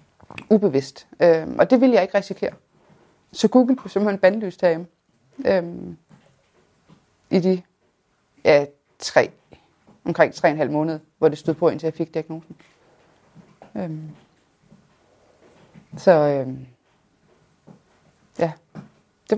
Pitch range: 165-205 Hz